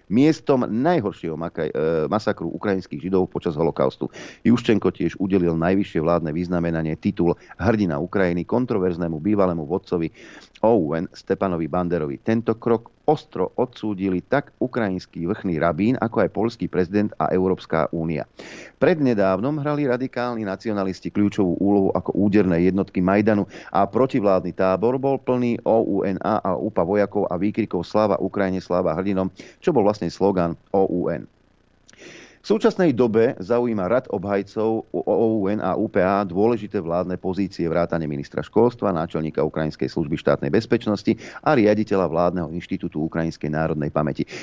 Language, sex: Slovak, male